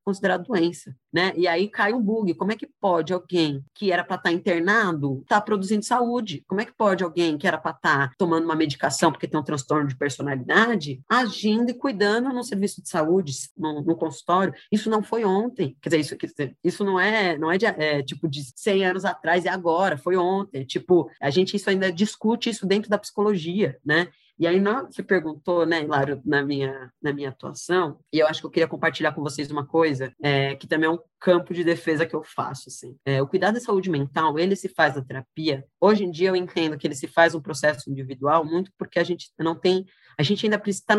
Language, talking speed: Portuguese, 230 wpm